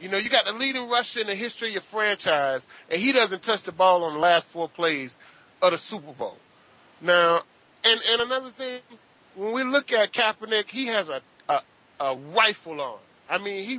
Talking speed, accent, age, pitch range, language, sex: 210 wpm, American, 30-49, 170-230 Hz, English, male